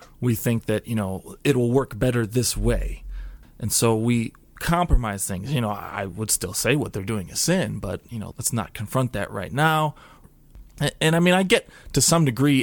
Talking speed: 215 wpm